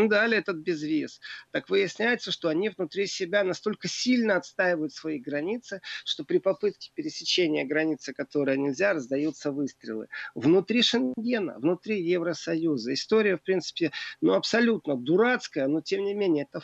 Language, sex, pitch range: Russian, male, 160-210 Hz